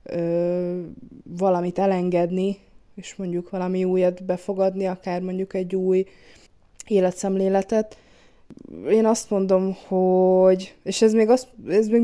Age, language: 20-39, Hungarian